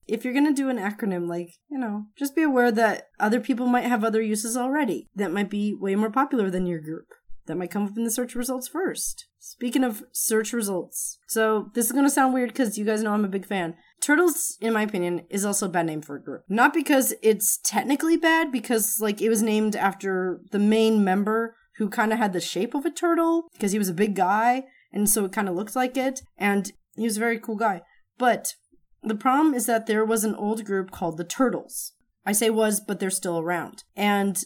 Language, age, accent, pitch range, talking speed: English, 20-39, American, 190-245 Hz, 235 wpm